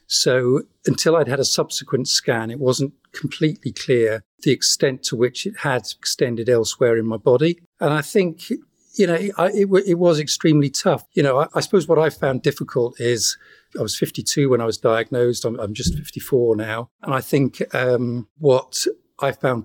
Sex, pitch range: male, 115-150 Hz